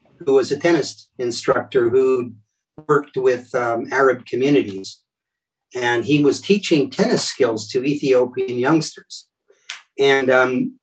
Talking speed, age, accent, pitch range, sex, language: 120 wpm, 50-69, American, 140-200 Hz, male, English